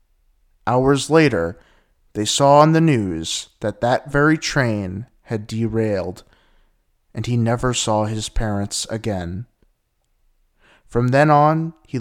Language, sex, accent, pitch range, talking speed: English, male, American, 105-140 Hz, 120 wpm